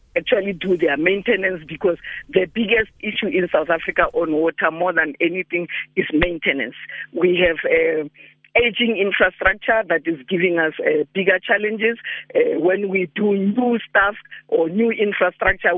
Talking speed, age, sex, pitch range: 150 wpm, 50-69, female, 165-225 Hz